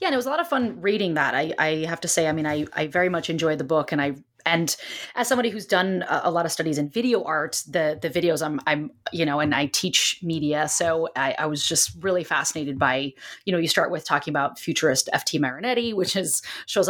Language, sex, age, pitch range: English, female, 30-49, 155-195 Hz